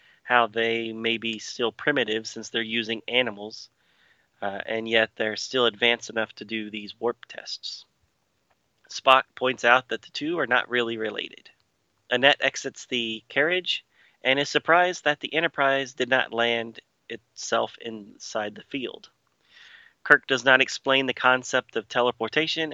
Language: English